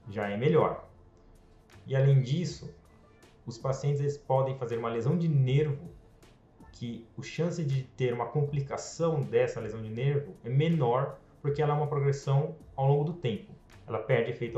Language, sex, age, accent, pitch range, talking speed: Portuguese, male, 20-39, Brazilian, 115-150 Hz, 165 wpm